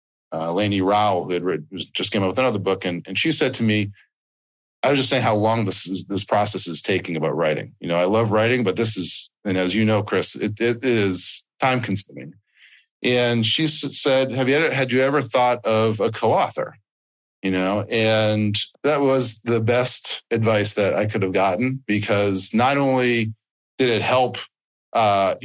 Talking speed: 190 wpm